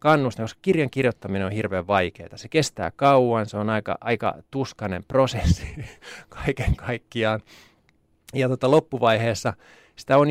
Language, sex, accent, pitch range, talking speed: Finnish, male, native, 105-135 Hz, 130 wpm